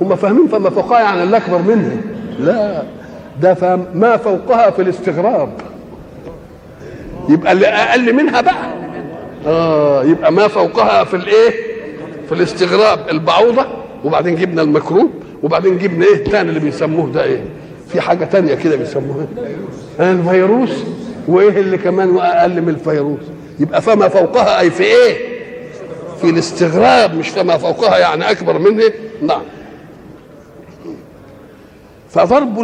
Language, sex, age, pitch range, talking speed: Arabic, male, 50-69, 170-230 Hz, 120 wpm